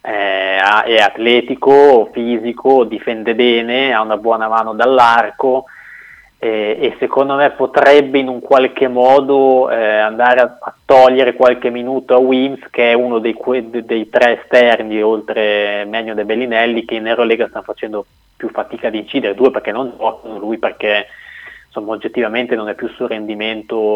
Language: Italian